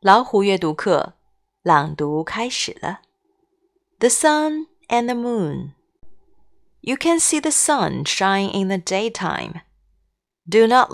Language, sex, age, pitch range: Chinese, female, 30-49, 175-260 Hz